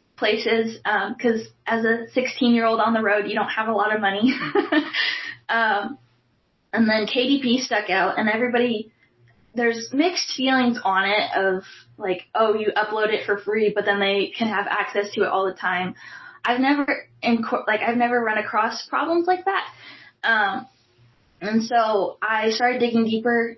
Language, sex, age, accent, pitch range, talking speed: English, female, 10-29, American, 205-240 Hz, 175 wpm